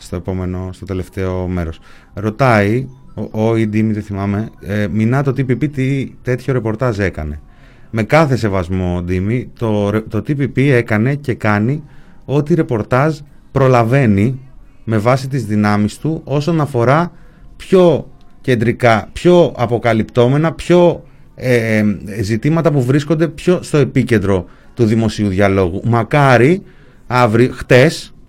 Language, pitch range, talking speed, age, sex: Greek, 110-150 Hz, 125 wpm, 30-49, male